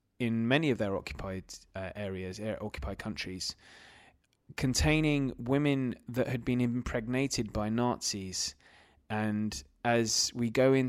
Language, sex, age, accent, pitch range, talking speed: English, male, 20-39, British, 105-130 Hz, 125 wpm